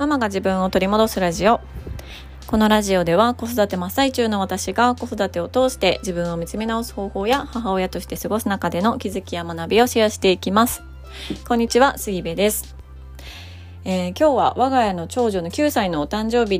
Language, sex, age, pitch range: Japanese, female, 20-39, 170-230 Hz